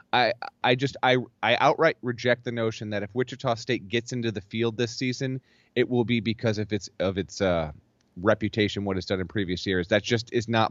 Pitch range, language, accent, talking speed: 100-125 Hz, English, American, 220 wpm